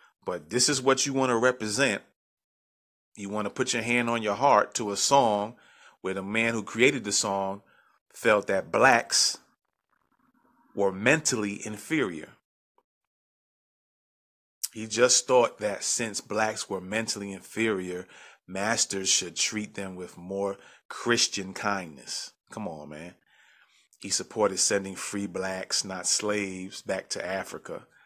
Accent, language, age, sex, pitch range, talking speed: American, English, 30-49, male, 95-115 Hz, 135 wpm